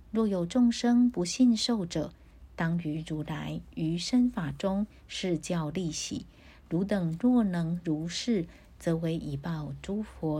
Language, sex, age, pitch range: Chinese, female, 50-69, 160-210 Hz